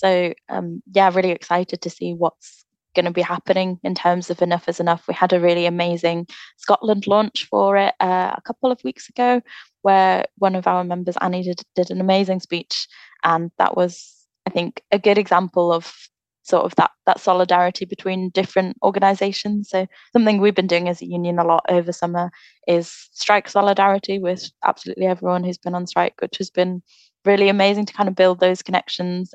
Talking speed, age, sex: 190 wpm, 20-39, female